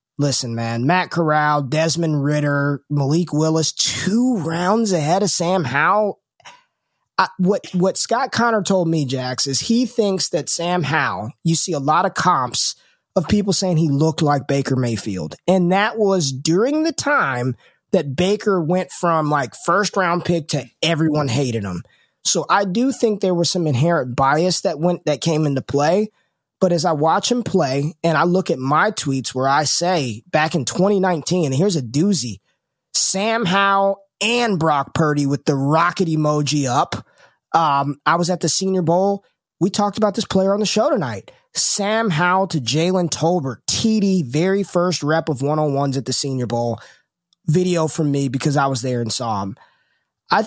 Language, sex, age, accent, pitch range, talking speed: English, male, 20-39, American, 145-190 Hz, 175 wpm